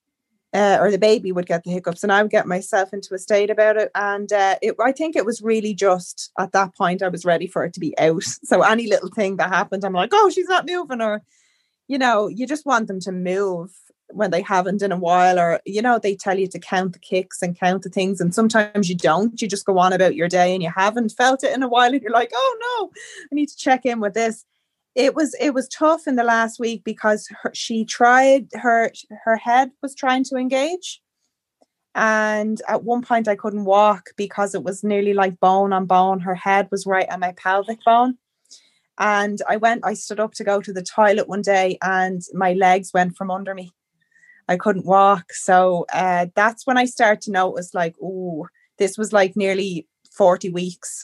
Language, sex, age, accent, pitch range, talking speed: English, female, 20-39, Irish, 185-230 Hz, 225 wpm